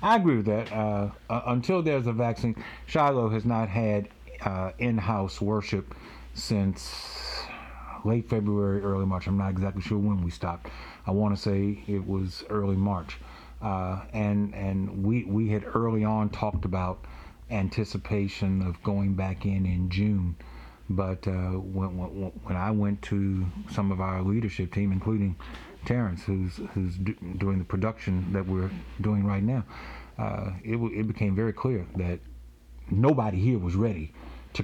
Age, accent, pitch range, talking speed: 50-69, American, 95-105 Hz, 160 wpm